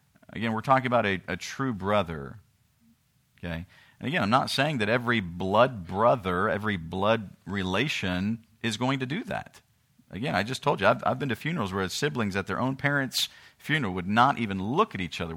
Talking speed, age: 195 wpm, 40-59